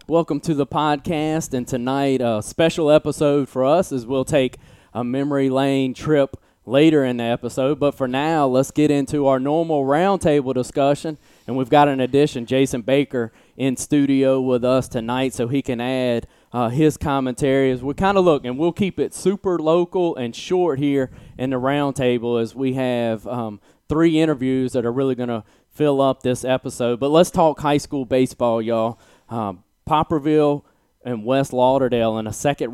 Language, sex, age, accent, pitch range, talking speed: English, male, 20-39, American, 125-145 Hz, 180 wpm